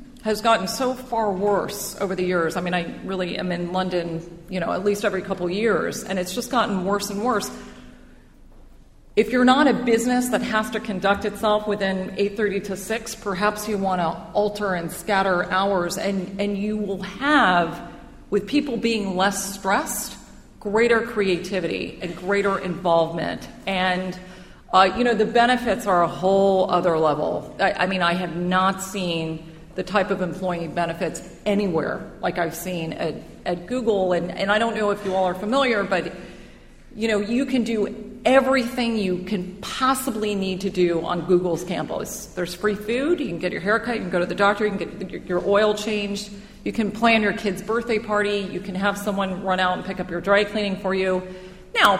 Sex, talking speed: female, 190 wpm